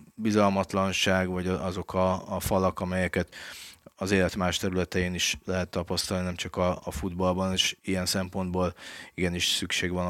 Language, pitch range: Hungarian, 90-100 Hz